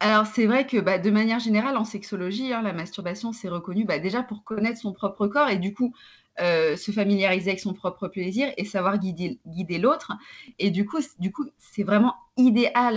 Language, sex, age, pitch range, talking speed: French, female, 20-39, 200-255 Hz, 205 wpm